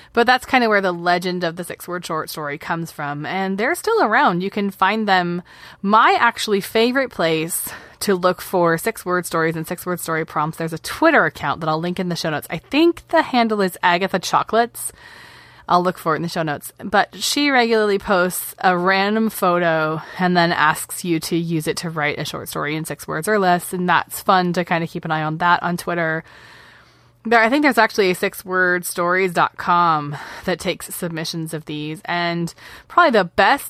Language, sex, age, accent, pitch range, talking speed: English, female, 20-39, American, 160-195 Hz, 200 wpm